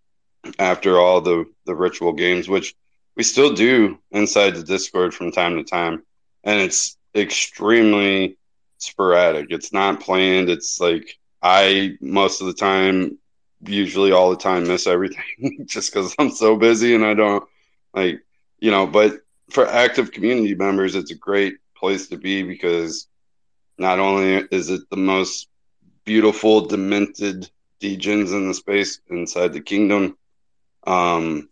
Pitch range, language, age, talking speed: 95-105 Hz, English, 20-39, 145 wpm